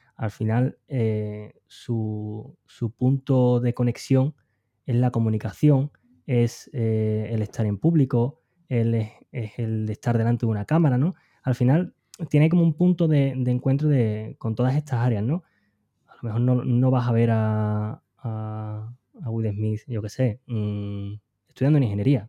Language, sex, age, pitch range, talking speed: Spanish, male, 20-39, 115-145 Hz, 165 wpm